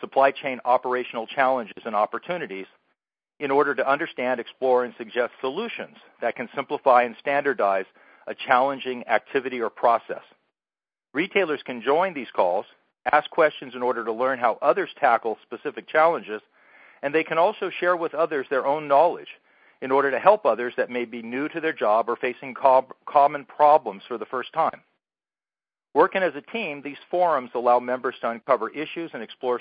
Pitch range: 120-150 Hz